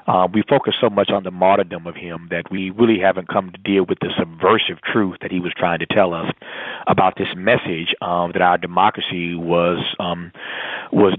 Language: English